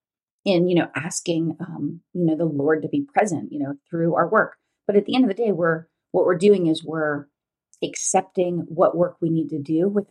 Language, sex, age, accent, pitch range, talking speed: English, female, 30-49, American, 155-190 Hz, 225 wpm